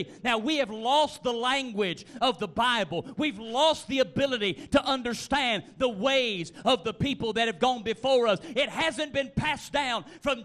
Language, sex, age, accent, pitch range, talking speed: English, male, 40-59, American, 170-275 Hz, 180 wpm